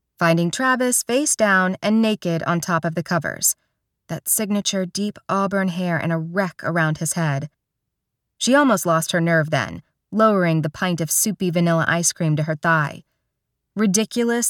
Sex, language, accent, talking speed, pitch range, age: female, English, American, 165 wpm, 165-215 Hz, 30-49